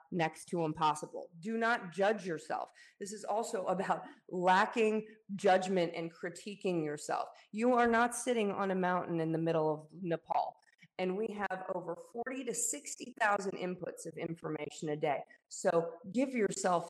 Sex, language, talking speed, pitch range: female, English, 155 wpm, 165-215 Hz